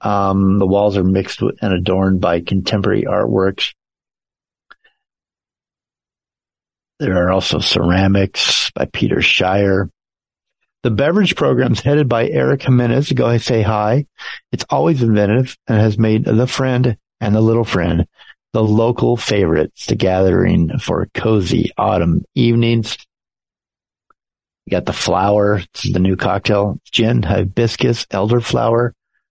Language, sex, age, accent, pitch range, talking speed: English, male, 50-69, American, 95-115 Hz, 130 wpm